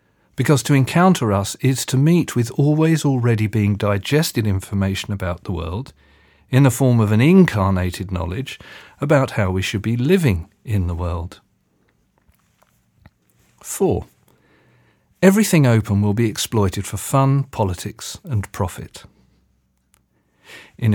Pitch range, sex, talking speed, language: 100-135 Hz, male, 125 wpm, English